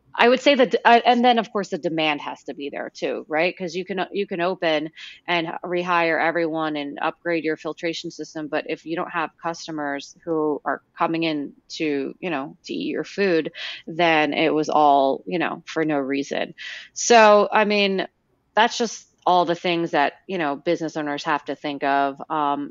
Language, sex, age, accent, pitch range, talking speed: English, female, 30-49, American, 150-185 Hz, 200 wpm